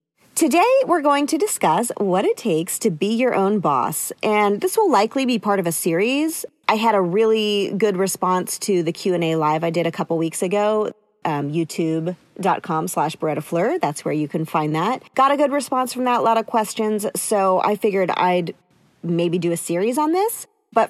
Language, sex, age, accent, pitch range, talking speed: English, female, 40-59, American, 180-255 Hz, 195 wpm